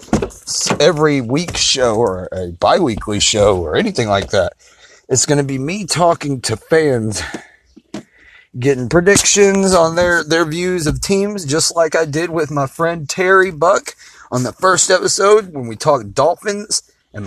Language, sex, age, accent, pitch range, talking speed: English, male, 30-49, American, 120-165 Hz, 155 wpm